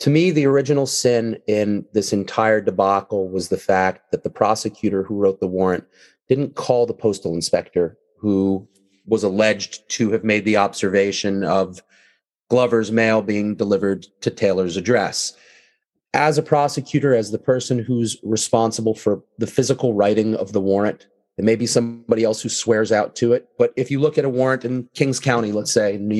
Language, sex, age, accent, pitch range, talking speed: English, male, 30-49, American, 105-135 Hz, 180 wpm